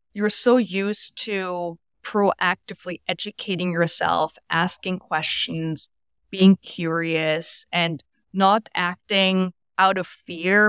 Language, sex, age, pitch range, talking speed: English, female, 20-39, 160-190 Hz, 95 wpm